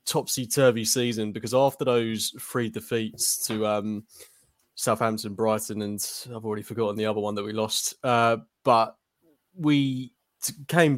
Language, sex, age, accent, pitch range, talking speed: English, male, 20-39, British, 105-125 Hz, 135 wpm